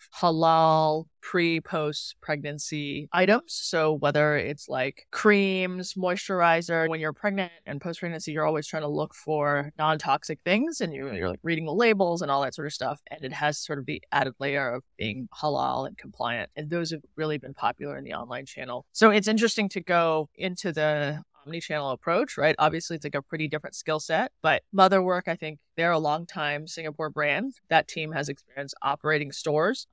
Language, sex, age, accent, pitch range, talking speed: English, female, 20-39, American, 150-195 Hz, 190 wpm